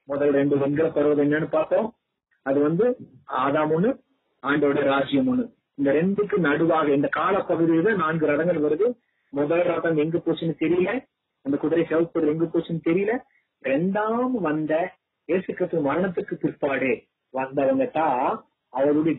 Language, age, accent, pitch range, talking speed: Tamil, 30-49, native, 145-185 Hz, 115 wpm